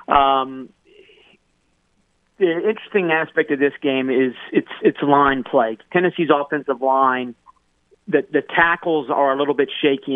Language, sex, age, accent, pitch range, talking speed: English, male, 50-69, American, 130-150 Hz, 135 wpm